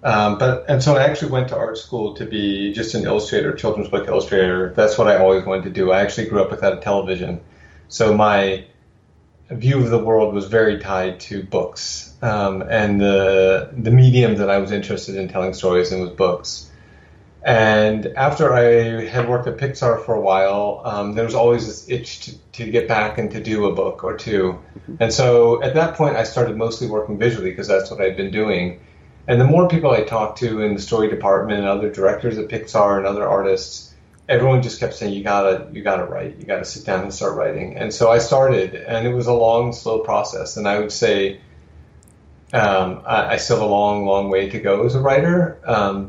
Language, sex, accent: English, male, American